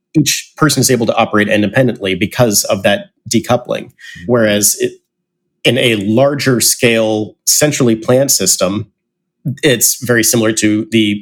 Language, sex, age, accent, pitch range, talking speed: English, male, 40-59, American, 105-130 Hz, 135 wpm